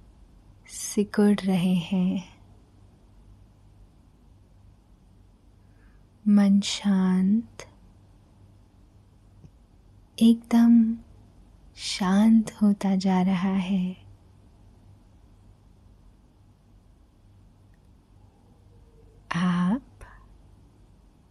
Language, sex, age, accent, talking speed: Hindi, female, 20-39, native, 35 wpm